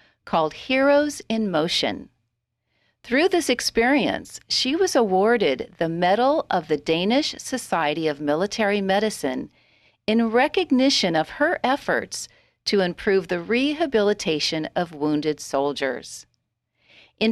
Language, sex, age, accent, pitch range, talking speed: English, female, 40-59, American, 165-255 Hz, 110 wpm